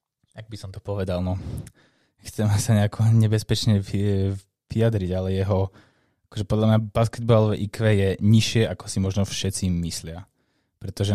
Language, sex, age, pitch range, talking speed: Slovak, male, 20-39, 95-105 Hz, 140 wpm